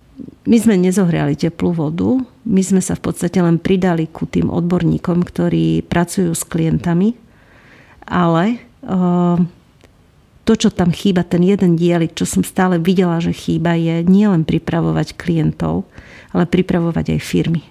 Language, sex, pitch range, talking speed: English, female, 165-190 Hz, 140 wpm